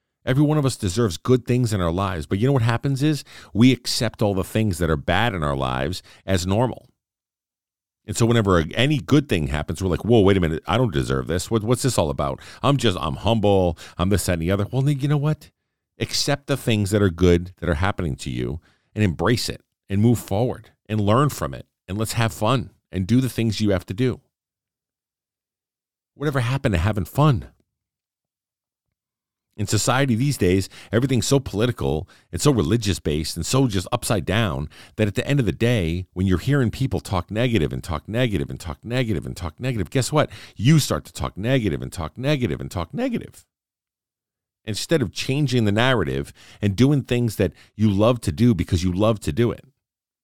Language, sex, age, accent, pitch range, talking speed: English, male, 50-69, American, 90-125 Hz, 205 wpm